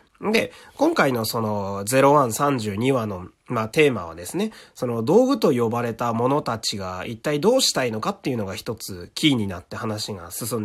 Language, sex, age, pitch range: Japanese, male, 30-49, 110-160 Hz